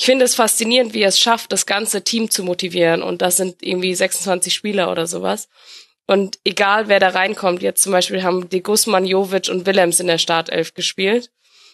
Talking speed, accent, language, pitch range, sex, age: 195 wpm, German, German, 180-205 Hz, female, 20-39